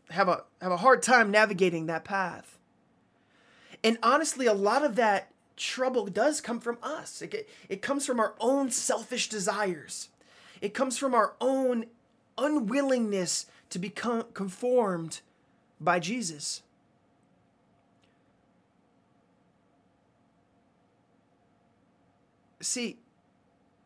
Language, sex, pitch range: English, male, 175-230 Hz